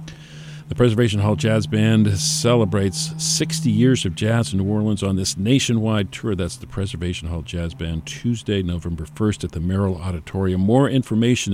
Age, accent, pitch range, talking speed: 50-69, American, 90-120 Hz, 165 wpm